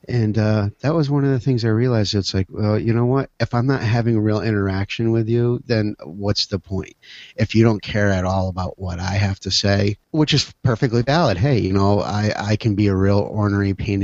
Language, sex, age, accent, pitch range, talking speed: English, male, 50-69, American, 95-115 Hz, 240 wpm